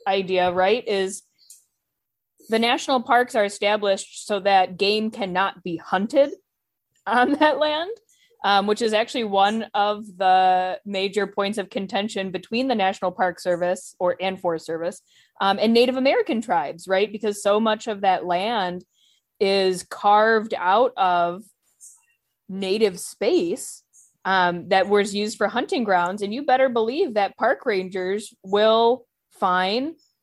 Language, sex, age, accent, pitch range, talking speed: English, female, 20-39, American, 185-230 Hz, 140 wpm